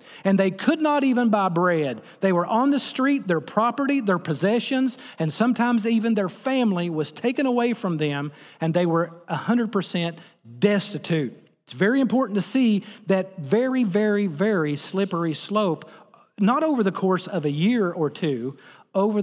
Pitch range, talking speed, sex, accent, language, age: 150-205 Hz, 160 wpm, male, American, English, 40-59